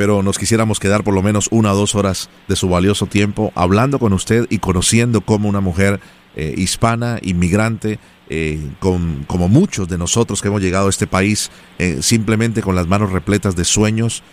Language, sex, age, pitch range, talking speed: Spanish, male, 40-59, 95-115 Hz, 195 wpm